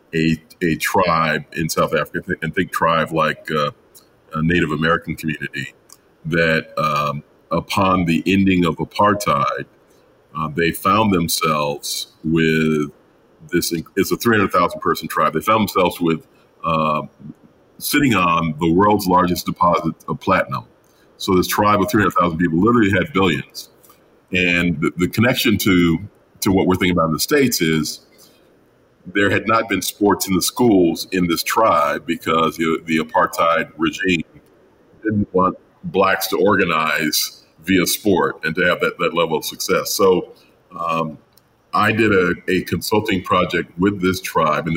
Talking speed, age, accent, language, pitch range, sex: 150 wpm, 40-59, American, English, 80-95 Hz, male